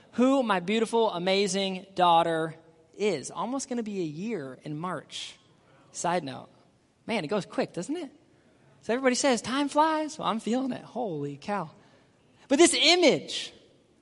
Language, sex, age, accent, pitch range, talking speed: English, male, 20-39, American, 230-280 Hz, 150 wpm